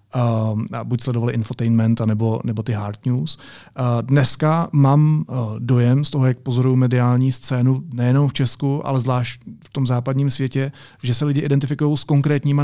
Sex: male